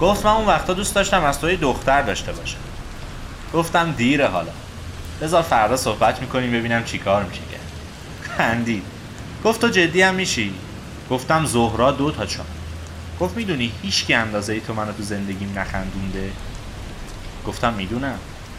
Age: 30-49